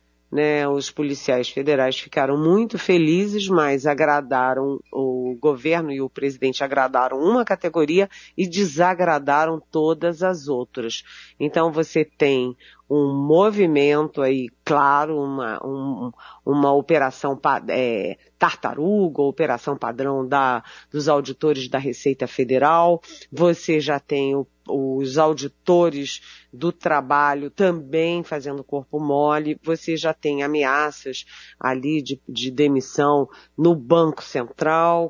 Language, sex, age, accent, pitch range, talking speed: Portuguese, female, 40-59, Brazilian, 140-165 Hz, 115 wpm